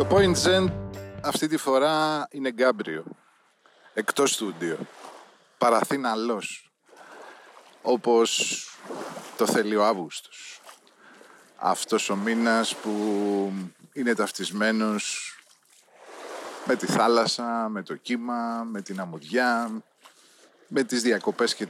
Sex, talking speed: male, 95 wpm